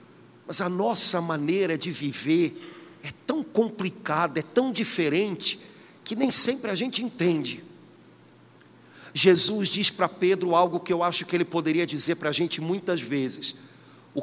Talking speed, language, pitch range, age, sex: 150 wpm, Portuguese, 155-185 Hz, 50-69, male